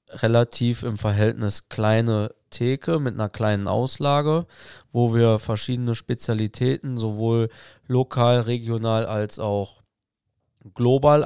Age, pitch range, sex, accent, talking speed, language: 20-39, 110-130 Hz, male, German, 100 wpm, German